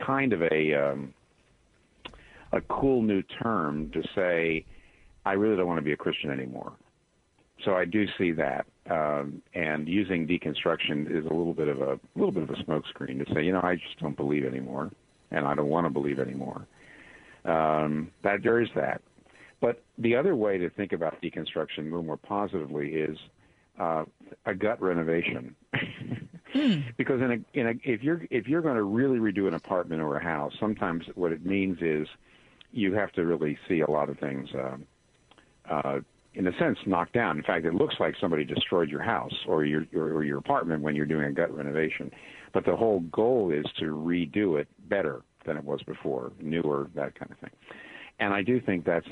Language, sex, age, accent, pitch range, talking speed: English, male, 50-69, American, 75-95 Hz, 195 wpm